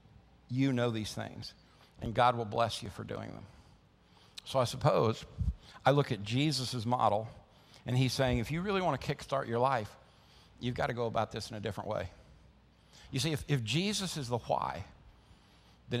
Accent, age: American, 50-69